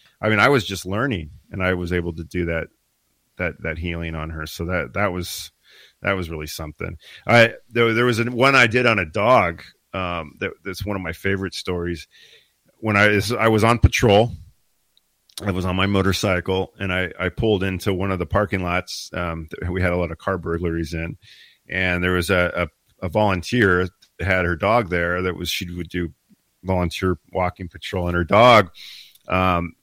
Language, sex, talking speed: English, male, 200 wpm